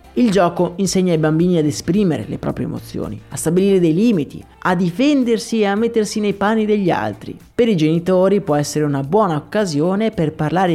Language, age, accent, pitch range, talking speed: Italian, 30-49, native, 150-200 Hz, 185 wpm